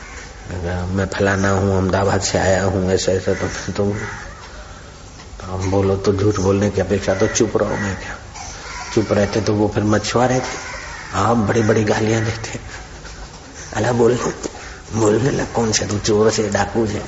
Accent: native